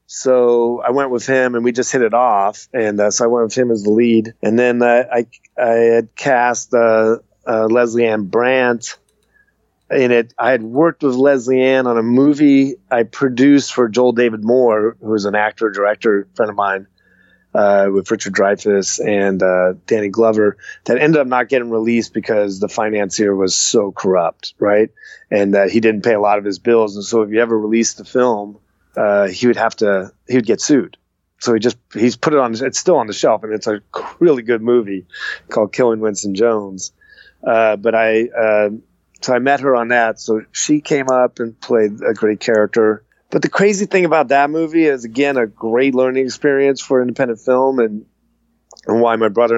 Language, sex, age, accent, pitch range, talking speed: English, male, 30-49, American, 105-125 Hz, 205 wpm